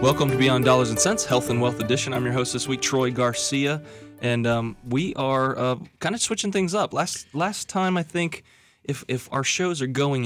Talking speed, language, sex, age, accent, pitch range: 220 wpm, English, male, 20-39, American, 115-130 Hz